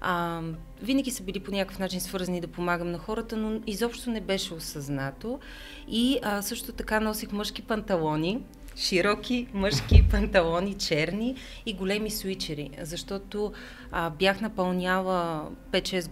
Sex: female